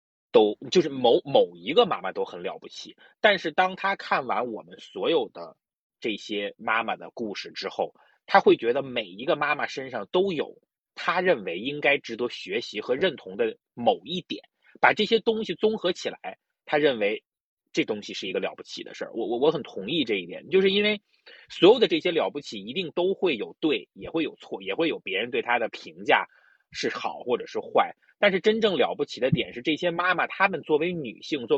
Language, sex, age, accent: Chinese, male, 30-49, native